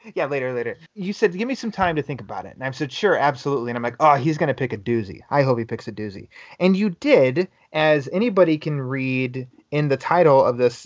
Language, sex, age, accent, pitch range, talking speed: English, male, 30-49, American, 125-160 Hz, 255 wpm